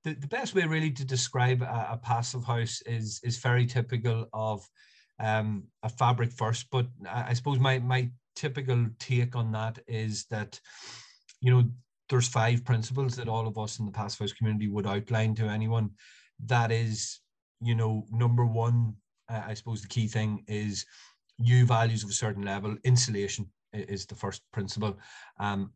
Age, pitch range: 30-49, 105-120 Hz